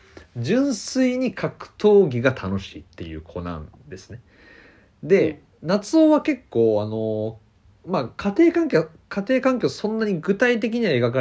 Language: Japanese